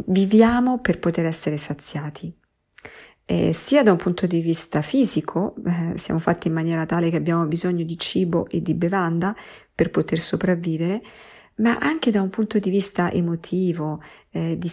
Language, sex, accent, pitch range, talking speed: Italian, female, native, 160-205 Hz, 165 wpm